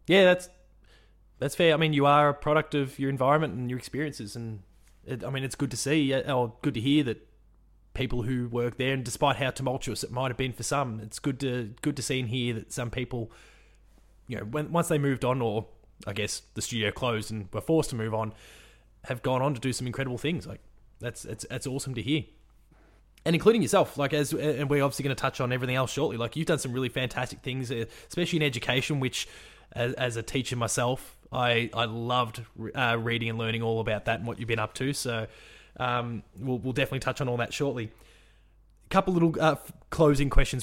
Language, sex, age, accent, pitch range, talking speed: English, male, 20-39, Australian, 115-140 Hz, 225 wpm